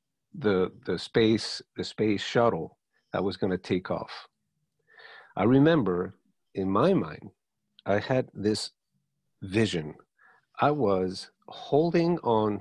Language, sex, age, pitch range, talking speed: English, male, 50-69, 90-125 Hz, 120 wpm